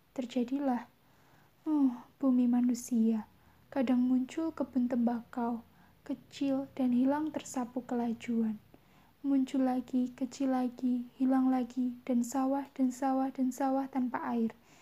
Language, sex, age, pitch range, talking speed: Indonesian, female, 10-29, 245-270 Hz, 110 wpm